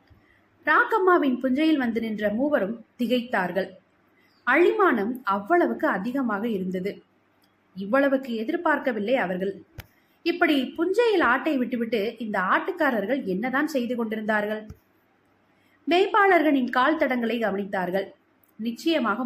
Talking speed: 70 wpm